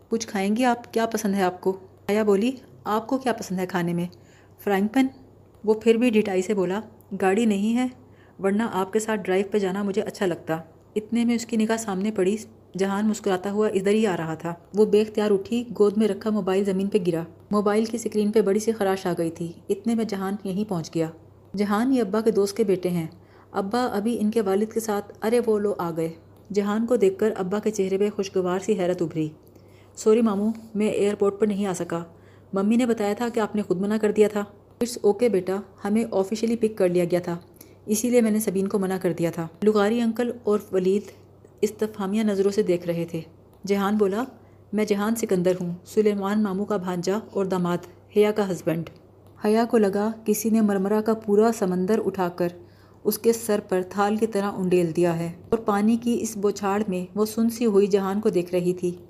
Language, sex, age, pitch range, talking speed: Urdu, female, 30-49, 185-220 Hz, 220 wpm